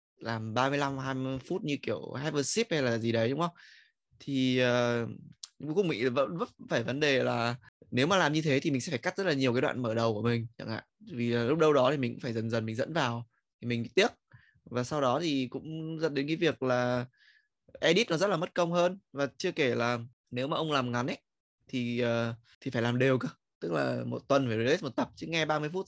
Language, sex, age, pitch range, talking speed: Vietnamese, male, 20-39, 120-150 Hz, 250 wpm